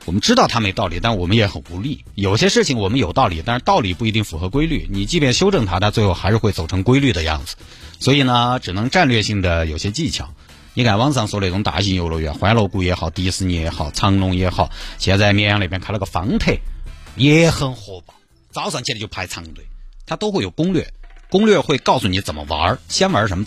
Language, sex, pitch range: Chinese, male, 90-120 Hz